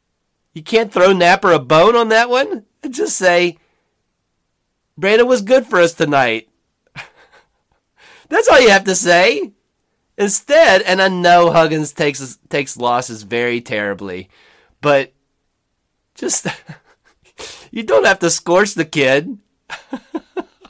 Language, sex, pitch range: English, male, 120-175 Hz